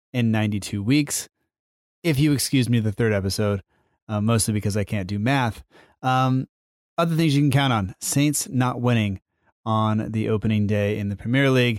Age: 30-49